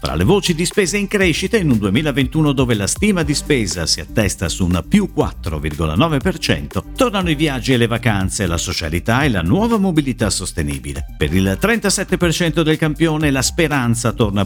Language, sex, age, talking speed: Italian, male, 50-69, 175 wpm